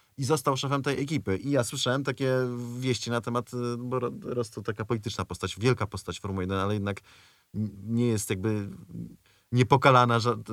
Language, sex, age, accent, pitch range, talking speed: Polish, male, 30-49, native, 100-125 Hz, 165 wpm